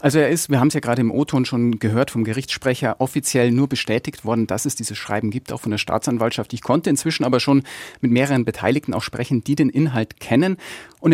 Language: German